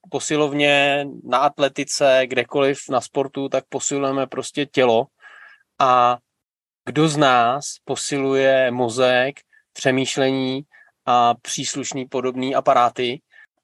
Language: Czech